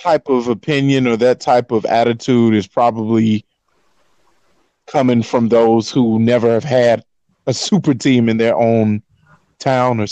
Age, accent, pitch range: 20-39, American, 110-135 Hz